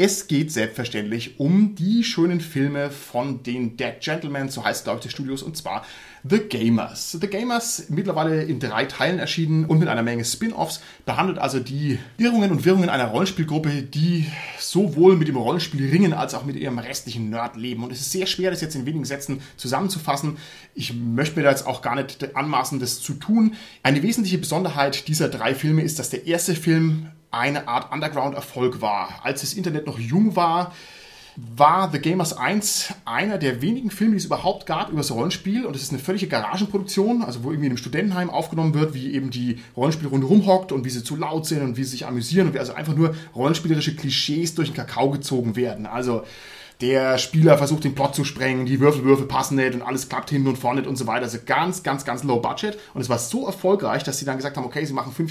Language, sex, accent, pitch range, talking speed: German, male, German, 130-175 Hz, 215 wpm